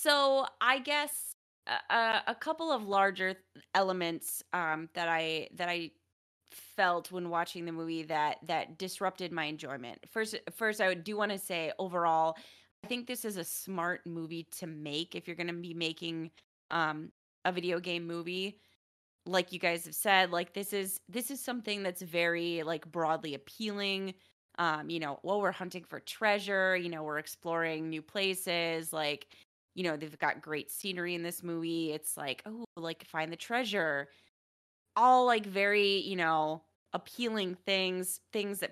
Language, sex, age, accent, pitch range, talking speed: English, female, 20-39, American, 160-195 Hz, 170 wpm